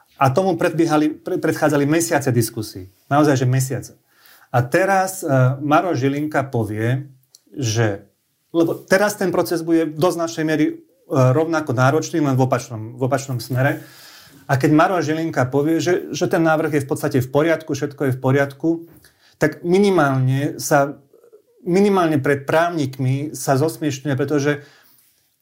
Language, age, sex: Slovak, 30-49, male